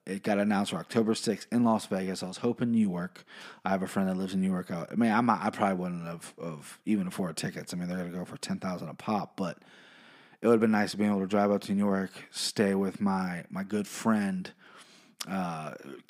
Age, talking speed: 30-49, 245 wpm